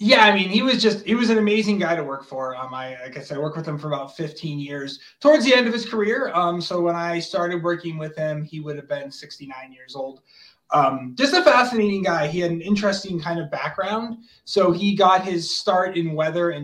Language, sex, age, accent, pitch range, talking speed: English, male, 20-39, American, 145-195 Hz, 240 wpm